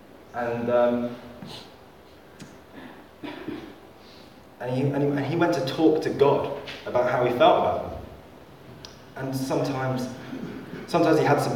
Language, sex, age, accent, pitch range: English, male, 20-39, British, 95-125 Hz